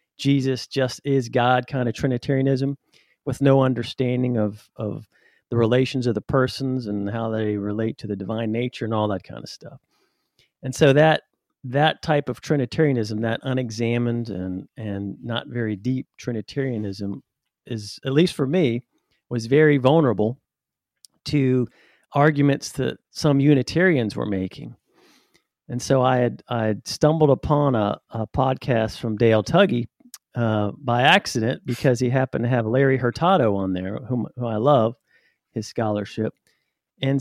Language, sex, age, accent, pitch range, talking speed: English, male, 40-59, American, 110-135 Hz, 150 wpm